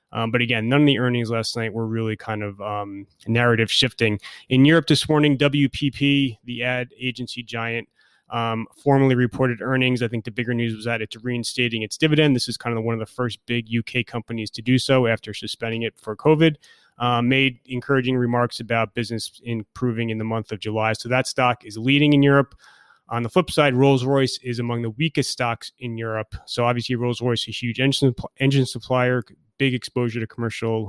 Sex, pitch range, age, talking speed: male, 115-130 Hz, 30-49, 200 wpm